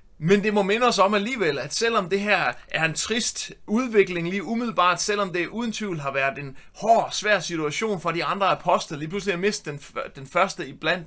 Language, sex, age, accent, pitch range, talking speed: Danish, male, 30-49, native, 155-205 Hz, 215 wpm